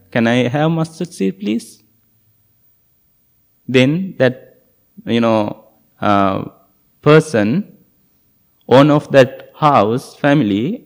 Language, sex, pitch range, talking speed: English, male, 115-140 Hz, 95 wpm